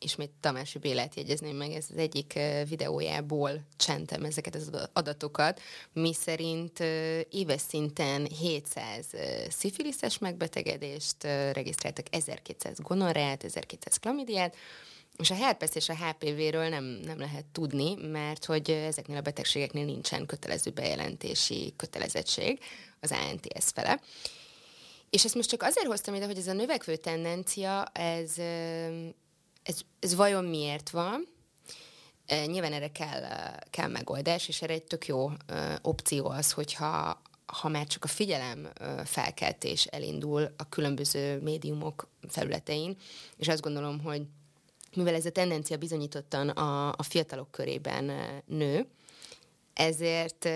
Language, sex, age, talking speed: Hungarian, female, 20-39, 125 wpm